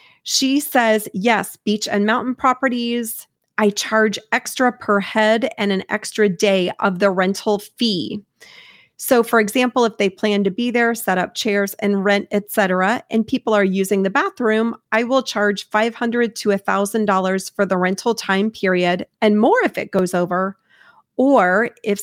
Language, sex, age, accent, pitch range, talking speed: English, female, 30-49, American, 195-235 Hz, 165 wpm